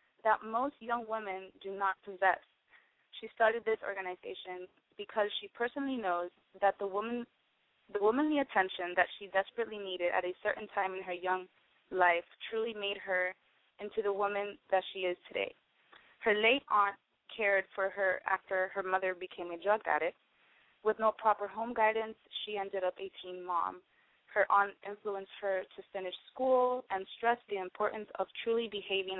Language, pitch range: English, 185-220 Hz